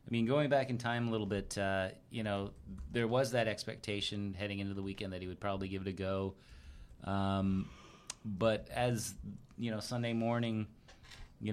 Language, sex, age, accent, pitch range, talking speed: English, male, 30-49, American, 95-110 Hz, 185 wpm